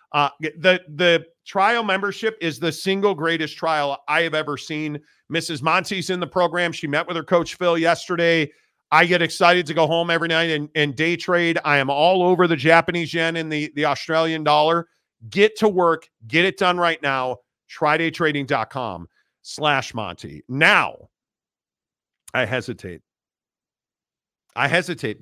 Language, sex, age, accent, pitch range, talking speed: English, male, 40-59, American, 145-175 Hz, 155 wpm